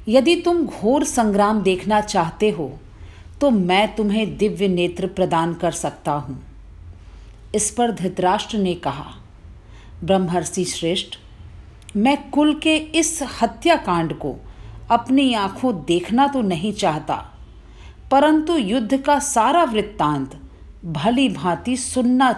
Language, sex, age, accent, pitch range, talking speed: Hindi, female, 40-59, native, 155-245 Hz, 115 wpm